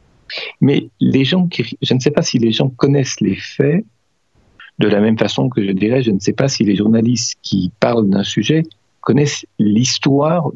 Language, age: French, 50-69